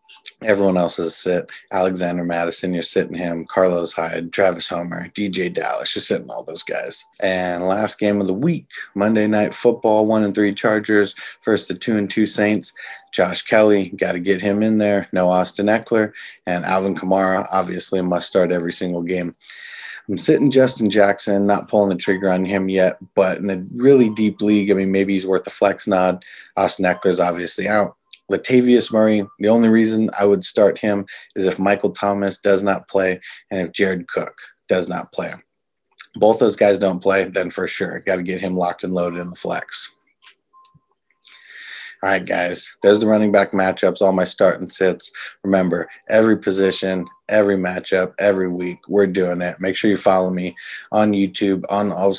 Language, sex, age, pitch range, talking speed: English, male, 30-49, 90-105 Hz, 185 wpm